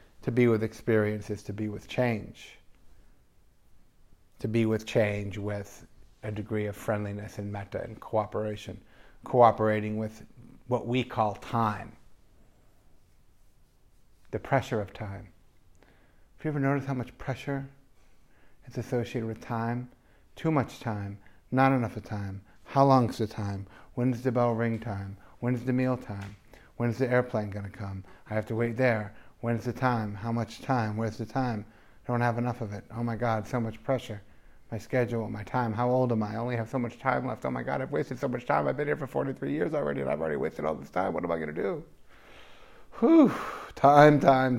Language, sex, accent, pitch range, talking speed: English, male, American, 105-125 Hz, 195 wpm